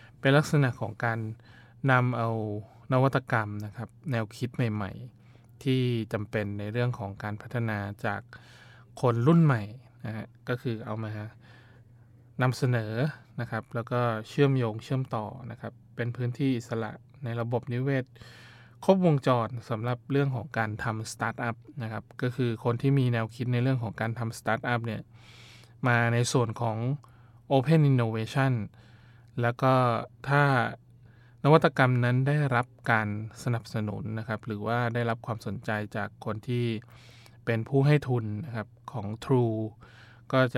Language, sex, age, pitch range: Thai, male, 20-39, 115-125 Hz